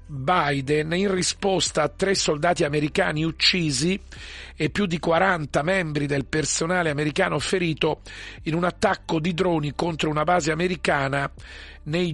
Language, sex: Italian, male